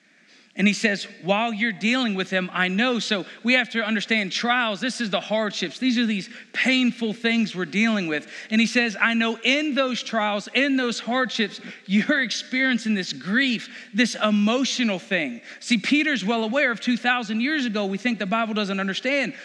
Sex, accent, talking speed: male, American, 185 wpm